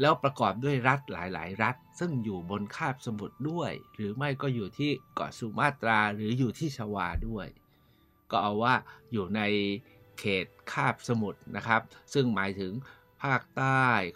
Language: Thai